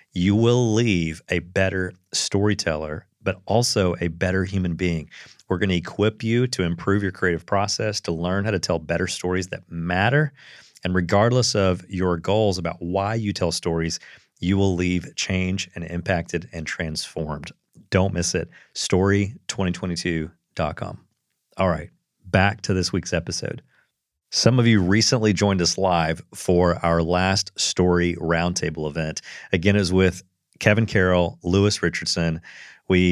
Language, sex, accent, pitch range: English, male, American, 85-105 Hz